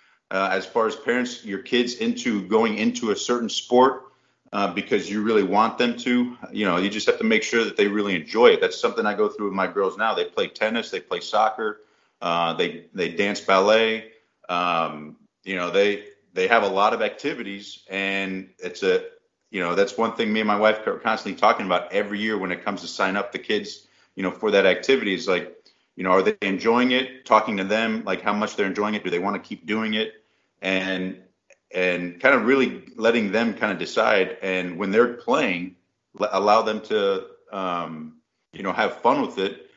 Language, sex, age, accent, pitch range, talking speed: English, male, 30-49, American, 95-125 Hz, 215 wpm